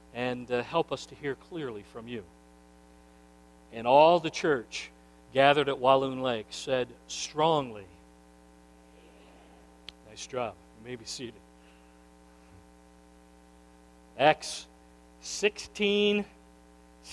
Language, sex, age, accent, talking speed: English, male, 50-69, American, 90 wpm